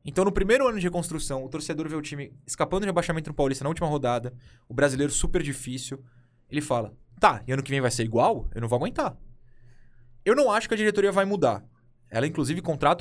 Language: Portuguese